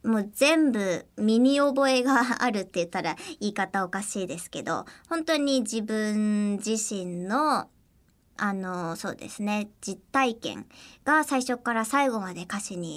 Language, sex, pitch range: Japanese, male, 205-290 Hz